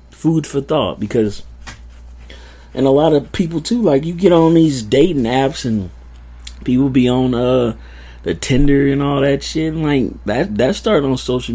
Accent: American